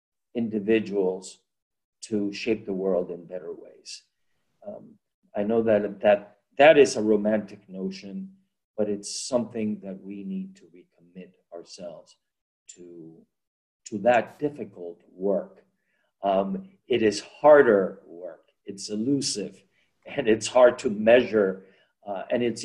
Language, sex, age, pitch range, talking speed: English, male, 50-69, 105-145 Hz, 125 wpm